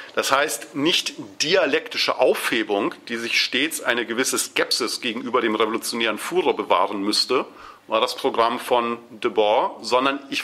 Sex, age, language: male, 40-59, German